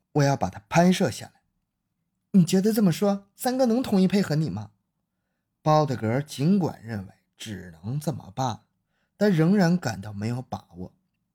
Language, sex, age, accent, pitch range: Chinese, male, 20-39, native, 120-185 Hz